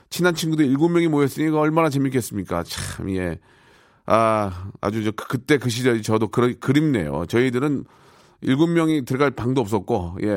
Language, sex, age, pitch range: Korean, male, 40-59, 105-150 Hz